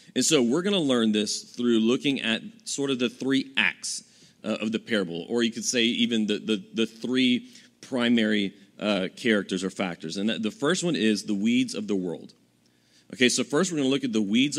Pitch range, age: 100-145 Hz, 30-49